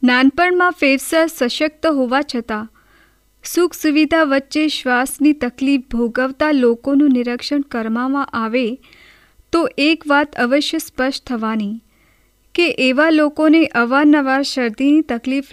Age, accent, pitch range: 30-49, native, 245-290 Hz